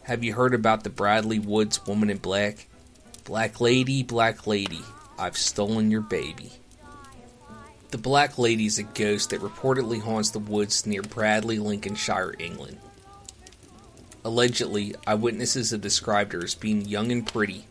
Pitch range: 105-115 Hz